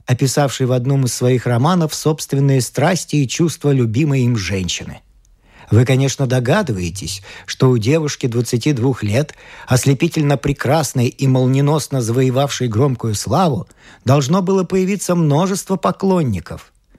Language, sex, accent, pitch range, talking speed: Russian, male, native, 125-175 Hz, 115 wpm